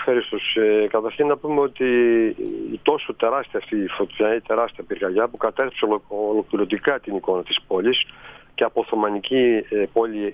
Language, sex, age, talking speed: Greek, male, 50-69, 140 wpm